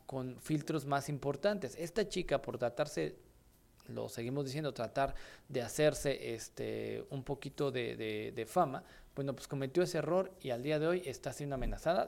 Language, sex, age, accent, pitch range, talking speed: Italian, male, 40-59, Mexican, 130-170 Hz, 165 wpm